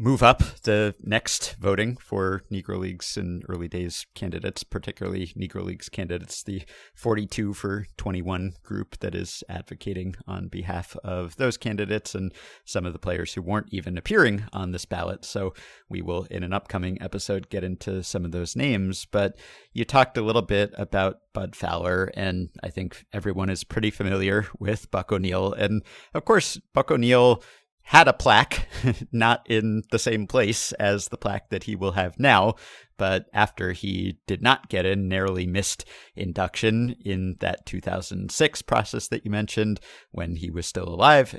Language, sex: English, male